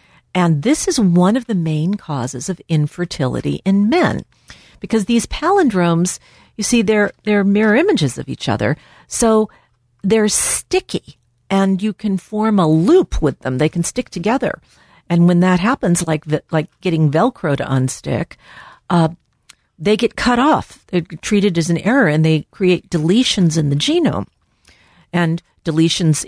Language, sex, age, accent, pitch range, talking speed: English, female, 50-69, American, 150-190 Hz, 160 wpm